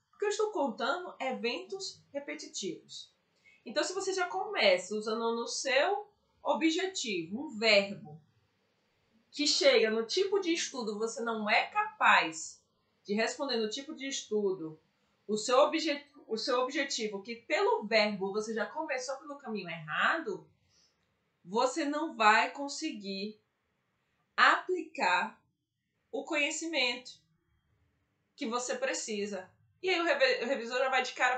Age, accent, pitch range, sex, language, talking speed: 20-39, Brazilian, 210-315 Hz, female, Portuguese, 125 wpm